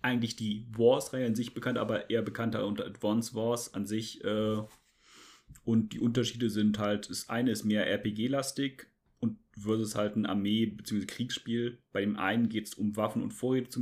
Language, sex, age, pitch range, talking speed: German, male, 30-49, 105-125 Hz, 180 wpm